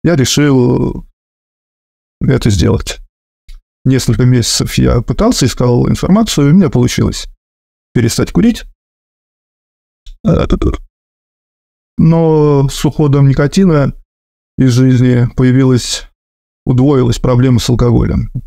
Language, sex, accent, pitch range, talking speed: Russian, male, native, 110-140 Hz, 90 wpm